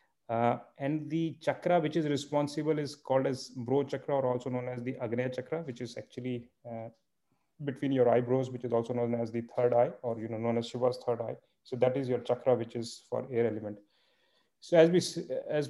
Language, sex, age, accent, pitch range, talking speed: English, male, 30-49, Indian, 120-135 Hz, 215 wpm